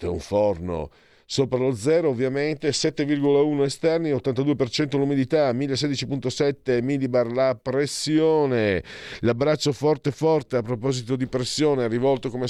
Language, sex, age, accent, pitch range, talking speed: Italian, male, 50-69, native, 95-135 Hz, 110 wpm